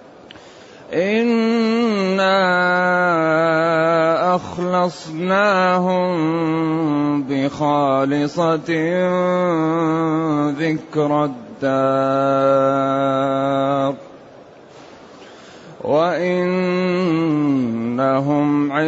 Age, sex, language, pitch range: 30-49, male, Arabic, 150-185 Hz